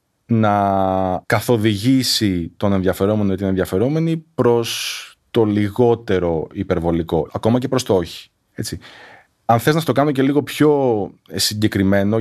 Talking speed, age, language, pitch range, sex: 130 wpm, 30-49, Greek, 95-130 Hz, male